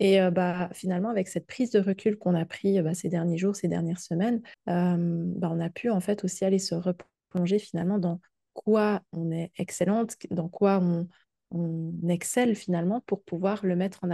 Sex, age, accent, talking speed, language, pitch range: female, 20-39, French, 200 wpm, French, 175-200 Hz